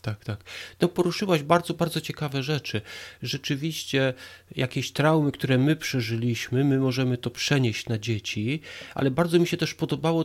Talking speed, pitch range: 150 wpm, 115-160 Hz